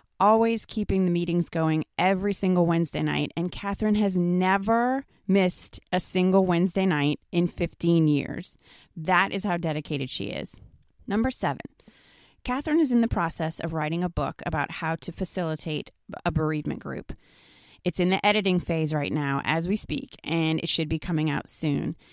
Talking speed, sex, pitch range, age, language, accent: 170 wpm, female, 155-195 Hz, 30-49, English, American